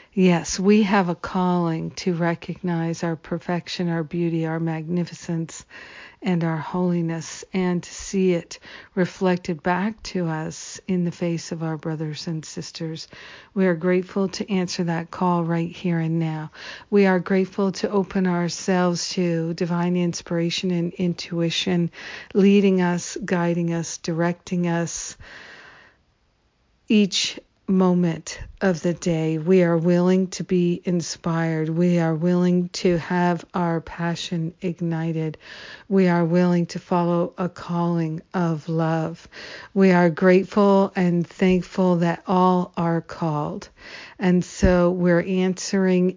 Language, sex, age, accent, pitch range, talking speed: English, female, 50-69, American, 170-185 Hz, 130 wpm